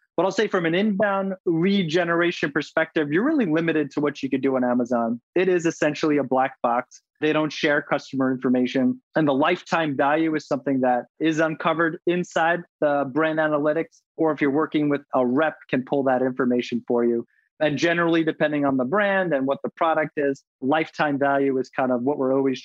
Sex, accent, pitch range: male, American, 135-170 Hz